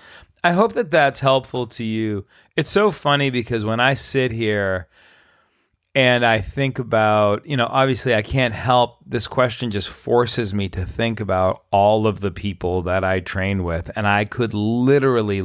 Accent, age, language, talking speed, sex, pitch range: American, 30-49, English, 175 wpm, male, 100-125 Hz